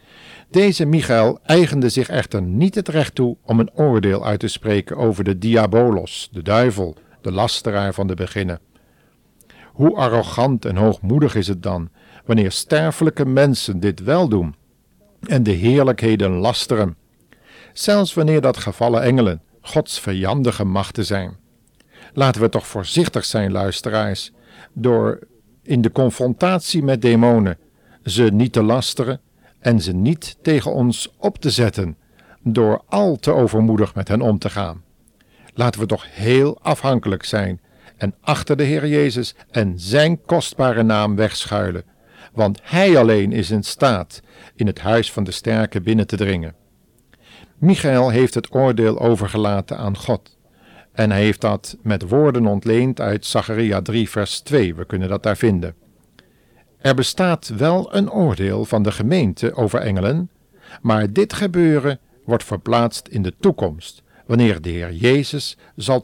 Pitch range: 100-130 Hz